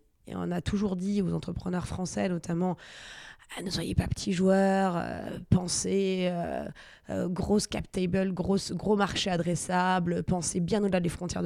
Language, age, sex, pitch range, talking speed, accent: French, 20-39, female, 170-200 Hz, 155 wpm, French